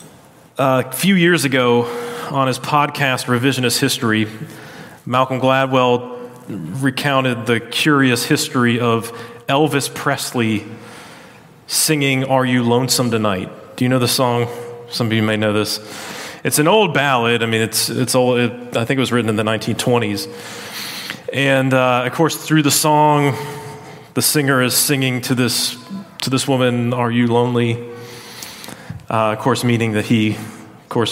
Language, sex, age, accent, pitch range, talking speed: English, male, 30-49, American, 115-140 Hz, 155 wpm